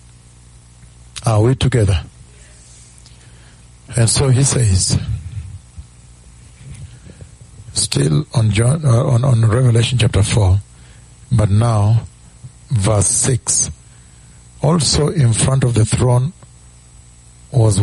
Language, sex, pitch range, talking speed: English, male, 95-130 Hz, 90 wpm